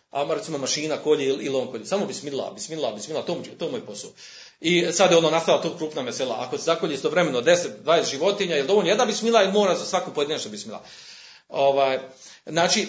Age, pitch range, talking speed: 40-59, 165-245 Hz, 200 wpm